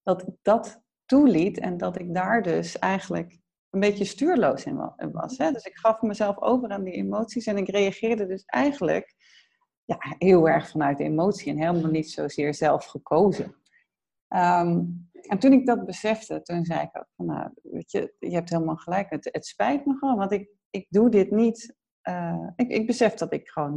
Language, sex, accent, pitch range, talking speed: Dutch, female, Dutch, 170-230 Hz, 190 wpm